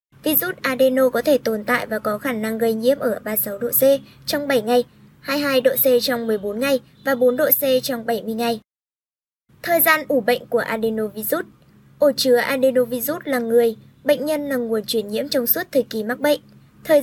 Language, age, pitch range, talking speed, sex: Vietnamese, 20-39, 230-285 Hz, 195 wpm, male